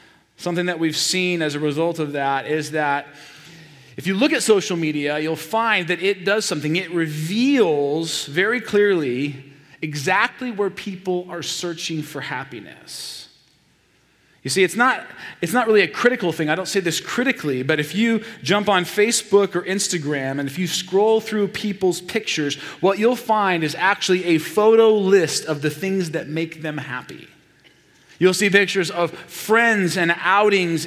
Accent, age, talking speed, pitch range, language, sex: American, 30-49, 165 wpm, 150-195 Hz, English, male